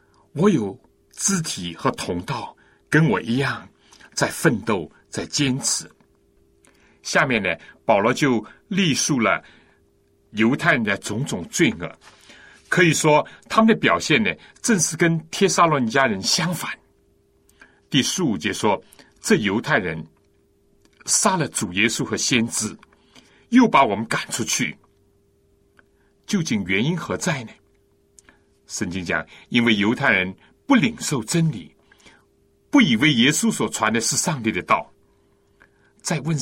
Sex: male